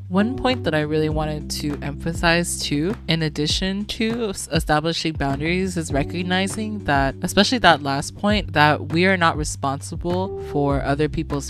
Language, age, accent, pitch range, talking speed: English, 20-39, American, 140-165 Hz, 150 wpm